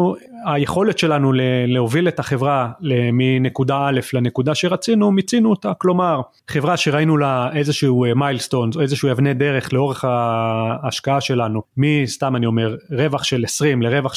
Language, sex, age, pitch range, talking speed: Hebrew, male, 30-49, 125-150 Hz, 130 wpm